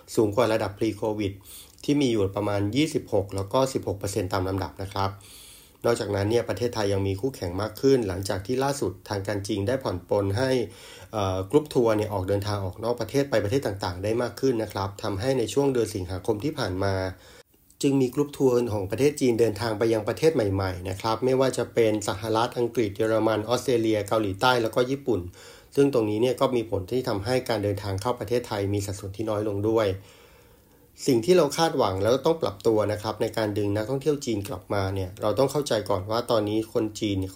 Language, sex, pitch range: Thai, male, 100-125 Hz